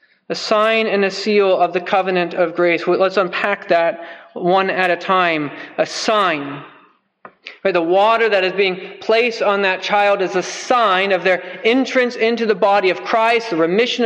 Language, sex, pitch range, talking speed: English, male, 195-235 Hz, 180 wpm